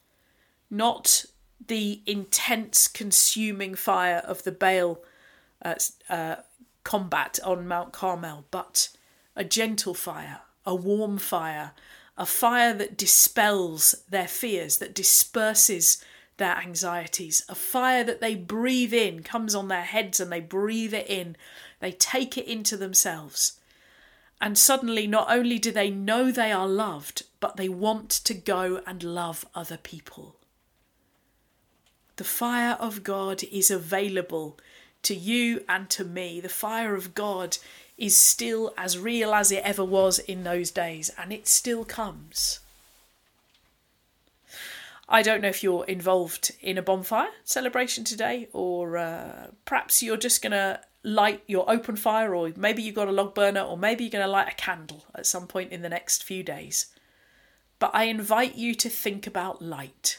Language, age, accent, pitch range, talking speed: English, 50-69, British, 185-225 Hz, 150 wpm